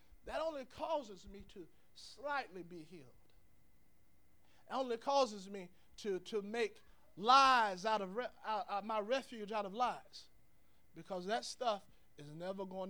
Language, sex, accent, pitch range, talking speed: English, male, American, 150-225 Hz, 150 wpm